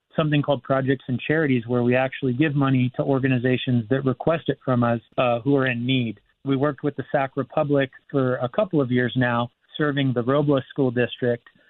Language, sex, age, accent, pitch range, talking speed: English, male, 30-49, American, 120-140 Hz, 200 wpm